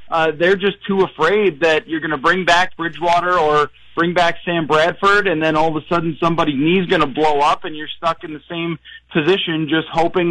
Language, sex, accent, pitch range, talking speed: English, male, American, 155-190 Hz, 220 wpm